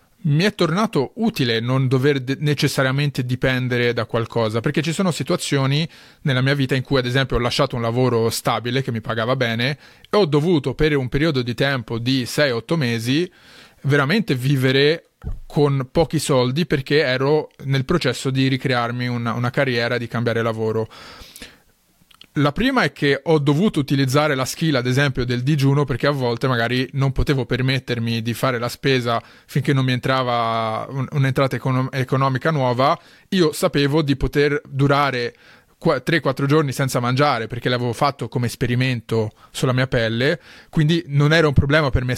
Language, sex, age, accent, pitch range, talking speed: Italian, male, 30-49, native, 125-150 Hz, 160 wpm